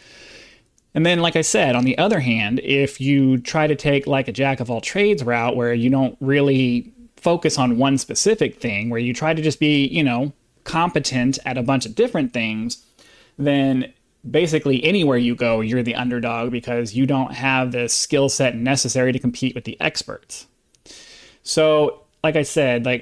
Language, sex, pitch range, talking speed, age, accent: English, male, 125-155 Hz, 175 wpm, 30-49, American